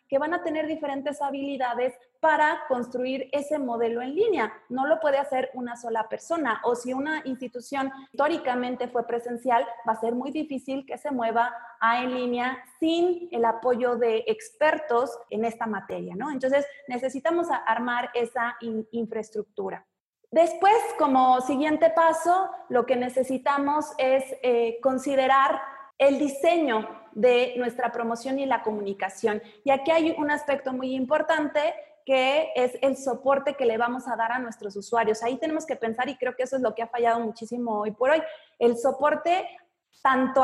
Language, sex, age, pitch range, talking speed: Spanish, female, 30-49, 235-295 Hz, 160 wpm